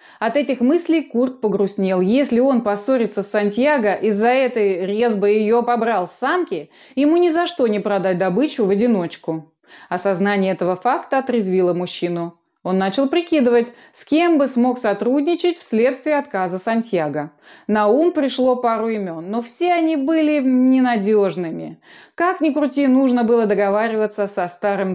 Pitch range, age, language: 200-285 Hz, 20-39, Russian